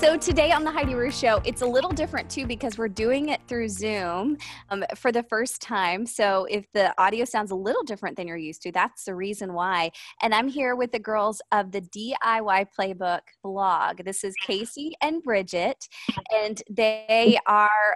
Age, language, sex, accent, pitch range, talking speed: 20-39, English, female, American, 195-245 Hz, 195 wpm